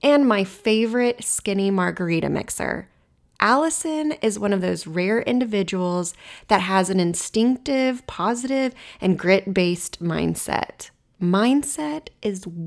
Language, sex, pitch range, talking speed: English, female, 180-260 Hz, 110 wpm